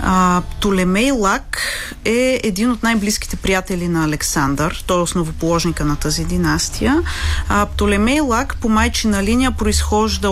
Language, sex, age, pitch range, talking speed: Bulgarian, female, 30-49, 170-230 Hz, 135 wpm